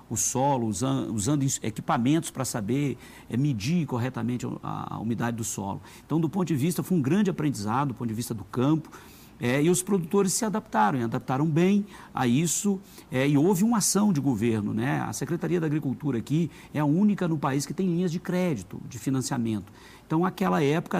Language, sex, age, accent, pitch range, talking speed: Portuguese, male, 50-69, Brazilian, 125-170 Hz, 185 wpm